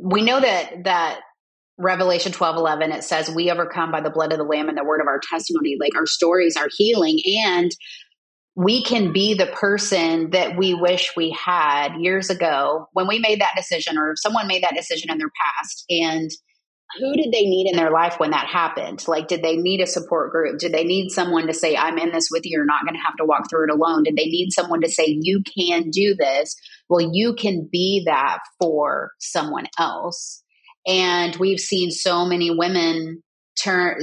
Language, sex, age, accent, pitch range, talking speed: English, female, 30-49, American, 165-190 Hz, 210 wpm